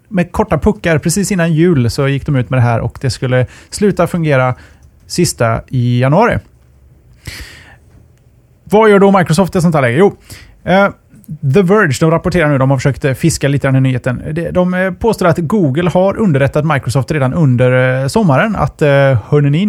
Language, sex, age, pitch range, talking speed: Swedish, male, 30-49, 125-160 Hz, 170 wpm